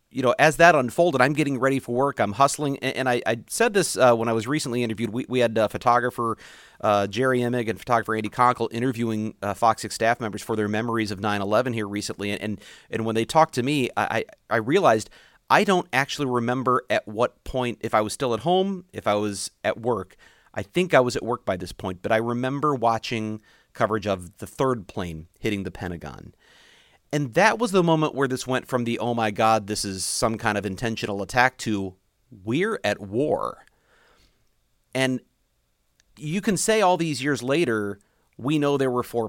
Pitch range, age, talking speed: 105-130 Hz, 40-59, 210 wpm